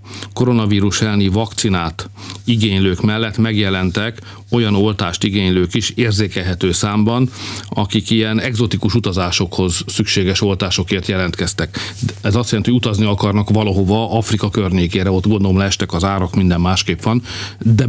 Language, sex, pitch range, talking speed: Hungarian, male, 95-110 Hz, 125 wpm